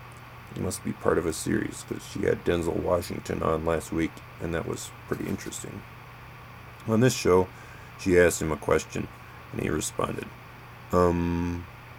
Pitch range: 85-115 Hz